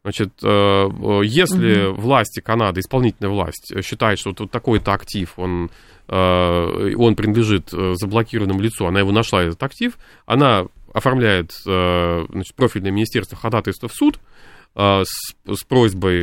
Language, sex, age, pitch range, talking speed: Russian, male, 30-49, 95-120 Hz, 115 wpm